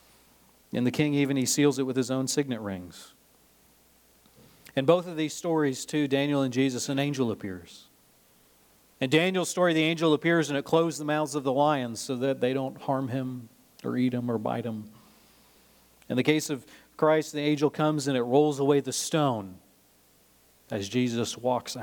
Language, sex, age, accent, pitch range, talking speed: English, male, 40-59, American, 125-170 Hz, 185 wpm